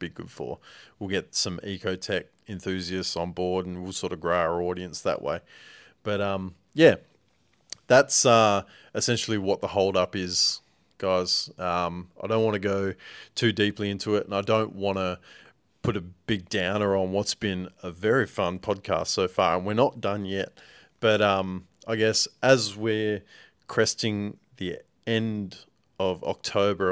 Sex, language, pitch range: male, English, 95-105 Hz